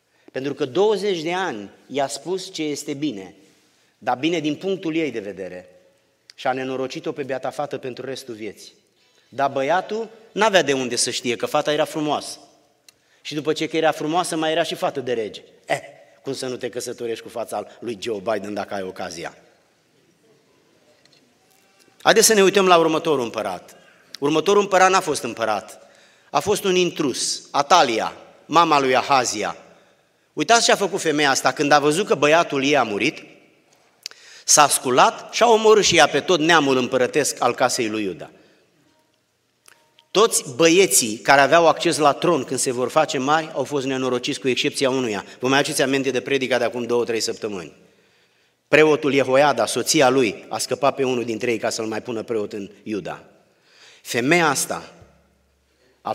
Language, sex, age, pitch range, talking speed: Romanian, male, 30-49, 125-165 Hz, 170 wpm